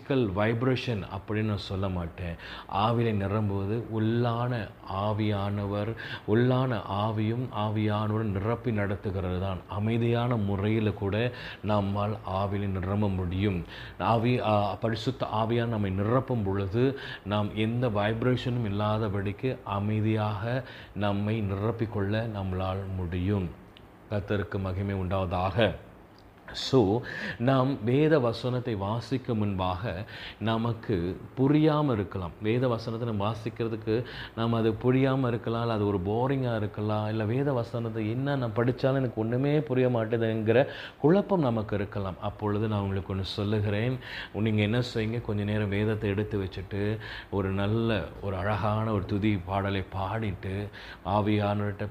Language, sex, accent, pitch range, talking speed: Tamil, male, native, 100-115 Hz, 105 wpm